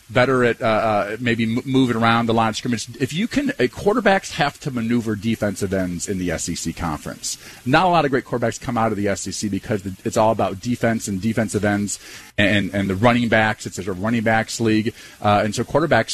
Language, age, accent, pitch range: English, 40-59, American, 105-130 Hz